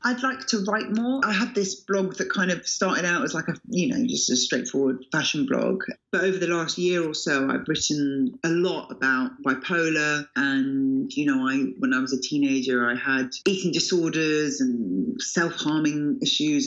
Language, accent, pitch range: English, British, 155-210 Hz